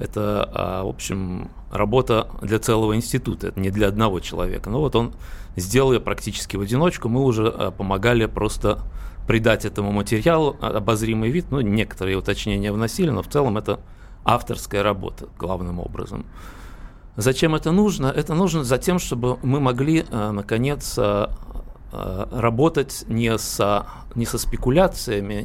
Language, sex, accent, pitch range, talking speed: Russian, male, native, 100-130 Hz, 135 wpm